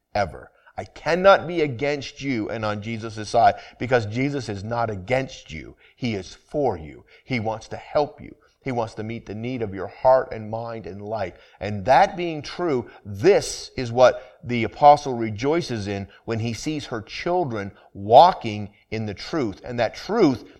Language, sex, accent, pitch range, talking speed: English, male, American, 115-165 Hz, 180 wpm